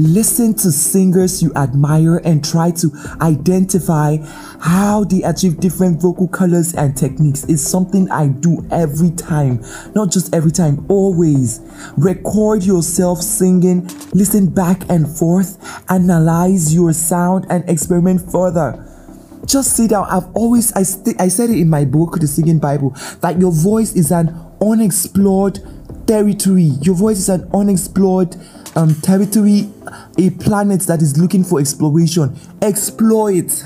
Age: 20-39